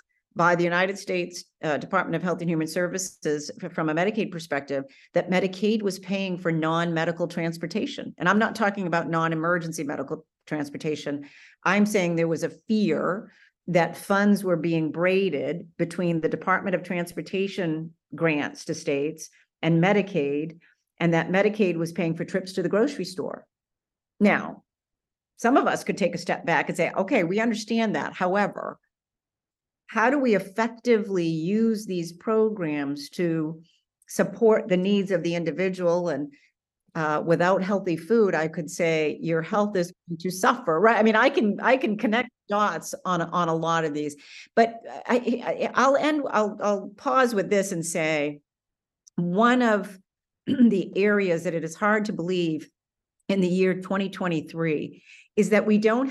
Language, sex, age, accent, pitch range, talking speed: English, female, 50-69, American, 165-205 Hz, 160 wpm